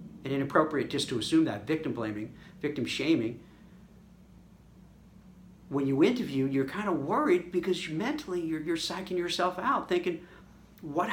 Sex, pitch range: male, 155-220 Hz